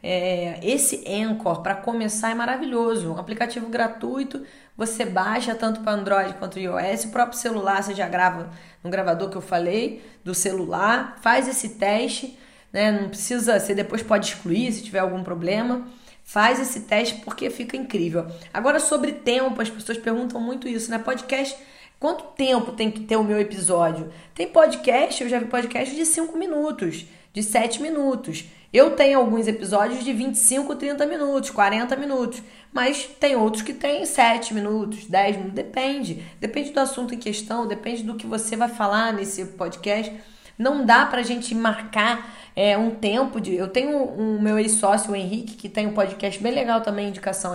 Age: 10-29